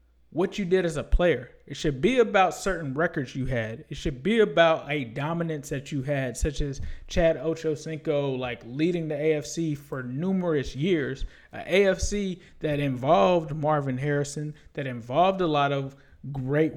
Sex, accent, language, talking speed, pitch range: male, American, English, 165 wpm, 140-165 Hz